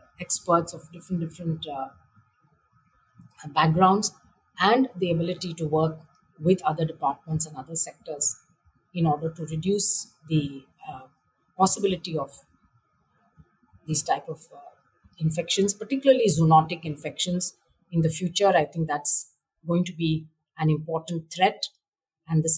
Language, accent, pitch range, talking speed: English, Indian, 150-180 Hz, 125 wpm